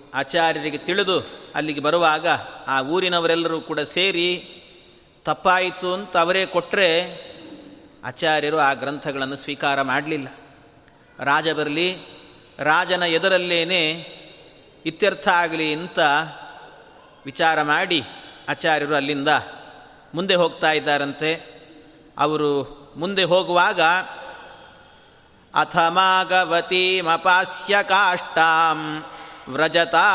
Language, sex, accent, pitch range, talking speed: Kannada, male, native, 155-180 Hz, 75 wpm